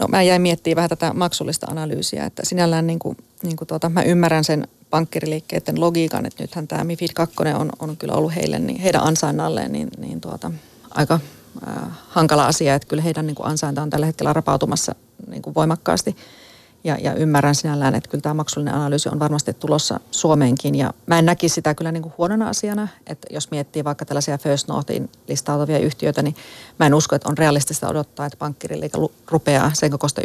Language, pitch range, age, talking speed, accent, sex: Finnish, 145-165 Hz, 30-49, 190 wpm, native, female